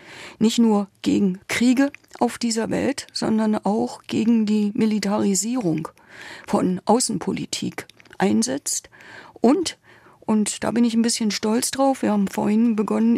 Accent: German